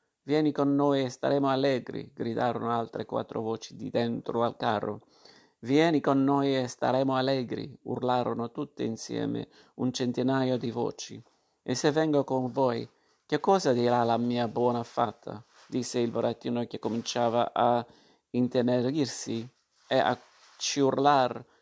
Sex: male